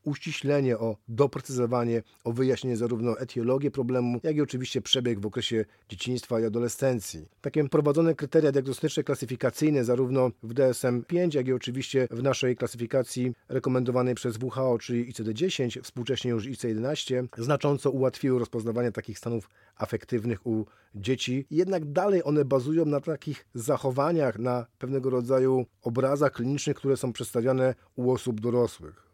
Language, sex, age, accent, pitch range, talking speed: Polish, male, 40-59, native, 120-145 Hz, 135 wpm